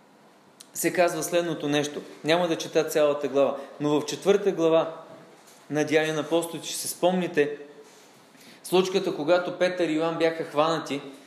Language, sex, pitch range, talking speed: Bulgarian, male, 145-195 Hz, 145 wpm